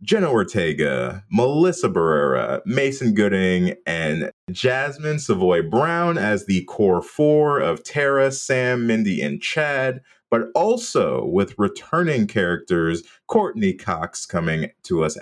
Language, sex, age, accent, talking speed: English, male, 30-49, American, 120 wpm